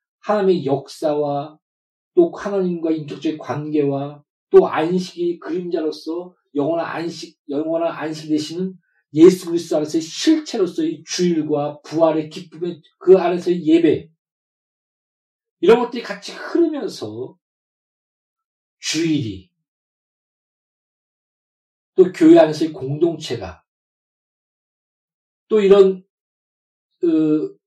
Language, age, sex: Korean, 40-59, male